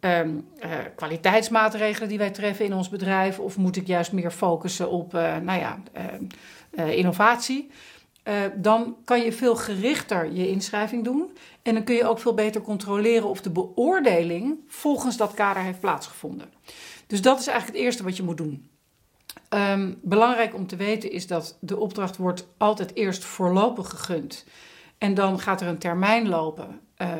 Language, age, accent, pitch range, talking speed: Dutch, 50-69, Dutch, 180-225 Hz, 170 wpm